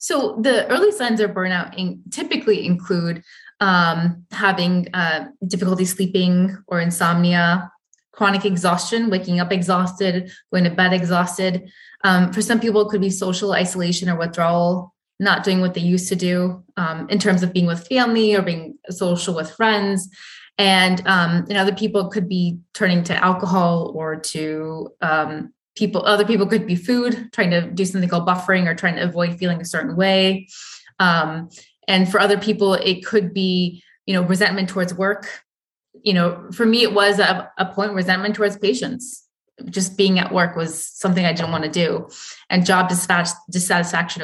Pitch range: 175-205 Hz